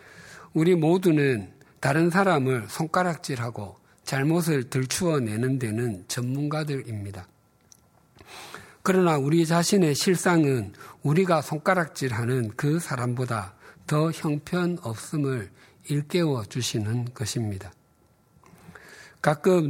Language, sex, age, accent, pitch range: Korean, male, 50-69, native, 120-160 Hz